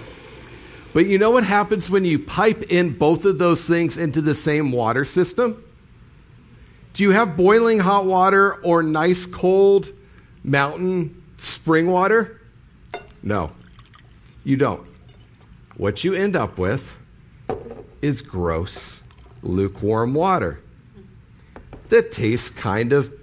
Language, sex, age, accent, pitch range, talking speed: English, male, 50-69, American, 105-165 Hz, 120 wpm